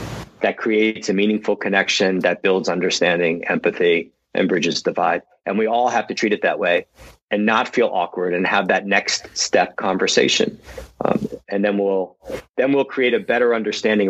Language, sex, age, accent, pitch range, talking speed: English, male, 40-59, American, 100-130 Hz, 170 wpm